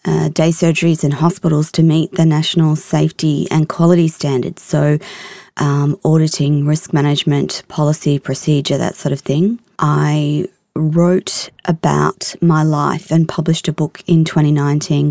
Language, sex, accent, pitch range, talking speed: English, female, Australian, 150-175 Hz, 140 wpm